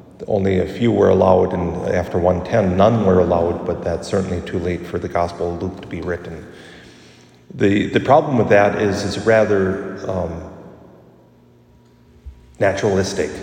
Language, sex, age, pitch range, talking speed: English, male, 40-59, 95-110 Hz, 150 wpm